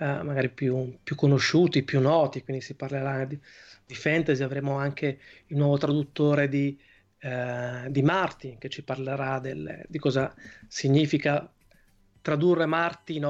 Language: Italian